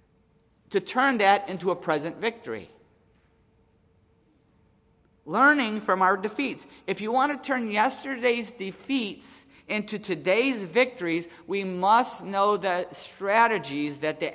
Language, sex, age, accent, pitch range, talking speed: English, male, 50-69, American, 190-255 Hz, 115 wpm